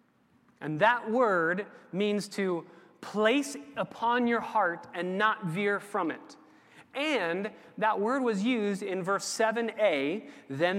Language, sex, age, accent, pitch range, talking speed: English, male, 30-49, American, 165-225 Hz, 130 wpm